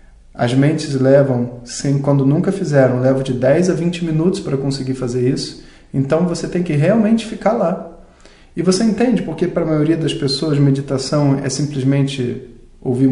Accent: Brazilian